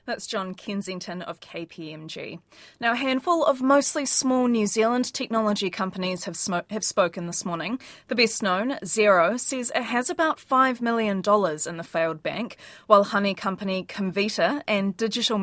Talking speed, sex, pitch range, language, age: 165 wpm, female, 190-240 Hz, English, 20-39